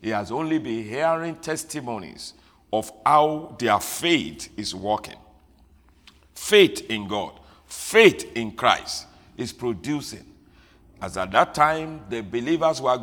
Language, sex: English, male